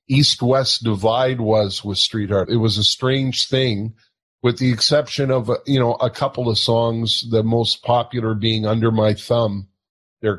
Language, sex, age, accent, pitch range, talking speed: English, male, 50-69, American, 105-130 Hz, 170 wpm